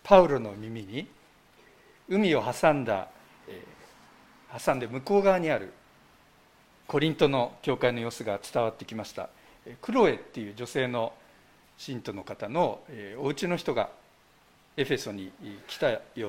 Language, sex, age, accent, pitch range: Japanese, male, 50-69, native, 120-185 Hz